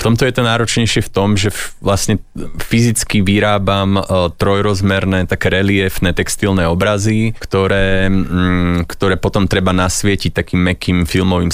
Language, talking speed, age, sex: Slovak, 125 wpm, 20-39, male